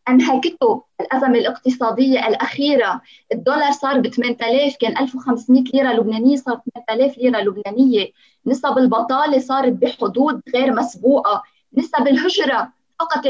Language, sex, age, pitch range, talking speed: Arabic, female, 20-39, 240-280 Hz, 115 wpm